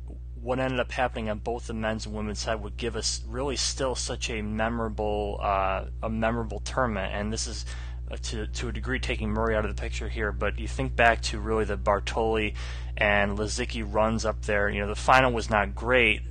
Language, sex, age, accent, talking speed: English, male, 20-39, American, 215 wpm